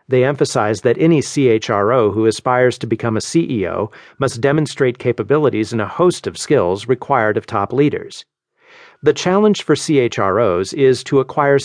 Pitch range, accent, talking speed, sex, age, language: 115-150 Hz, American, 155 wpm, male, 50-69, English